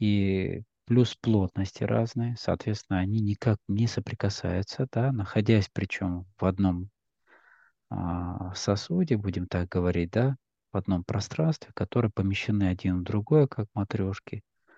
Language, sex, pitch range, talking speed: Russian, male, 90-110 Hz, 120 wpm